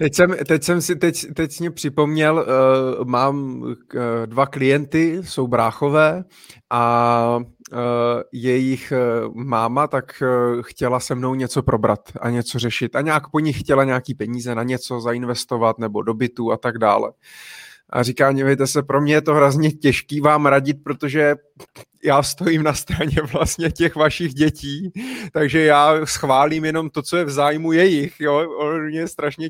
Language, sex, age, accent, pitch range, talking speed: Czech, male, 20-39, native, 125-155 Hz, 155 wpm